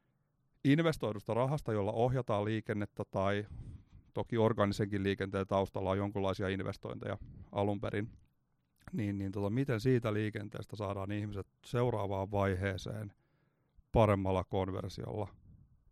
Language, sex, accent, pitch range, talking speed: Finnish, male, native, 100-115 Hz, 100 wpm